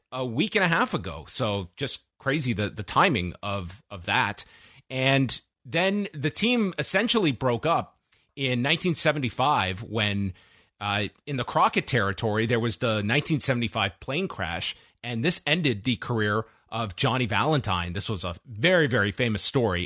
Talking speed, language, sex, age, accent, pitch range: 165 wpm, English, male, 30-49, American, 110-145 Hz